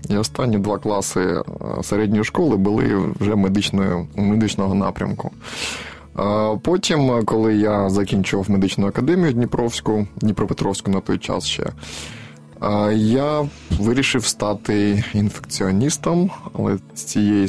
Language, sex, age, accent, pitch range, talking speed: Ukrainian, male, 20-39, native, 100-110 Hz, 100 wpm